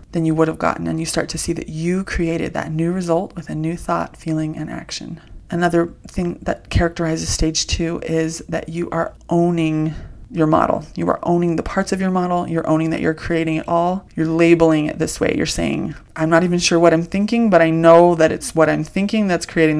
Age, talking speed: 20-39, 225 wpm